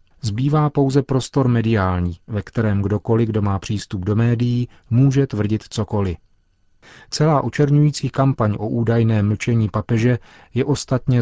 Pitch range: 105-120 Hz